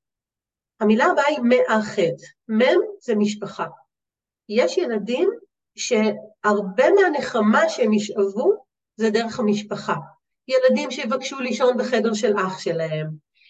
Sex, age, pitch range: female, 40-59, 205-270 Hz